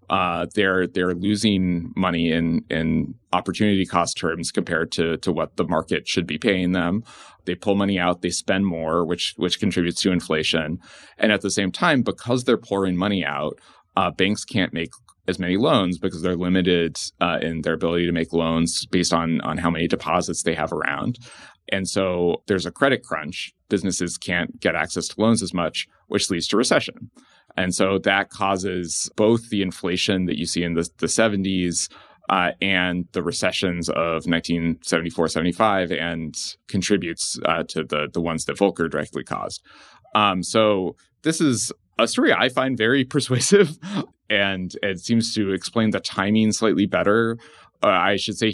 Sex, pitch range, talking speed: male, 85-100 Hz, 175 wpm